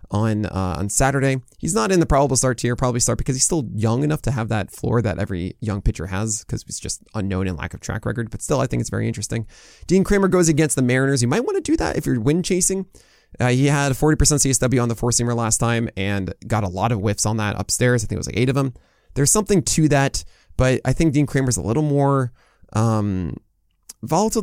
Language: English